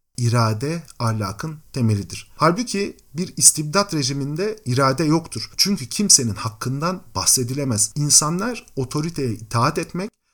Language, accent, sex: Turkish, native, male